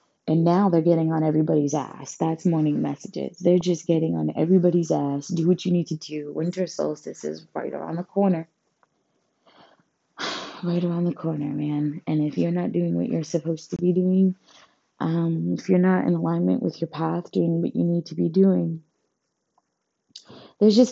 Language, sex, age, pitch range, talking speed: English, female, 20-39, 145-175 Hz, 180 wpm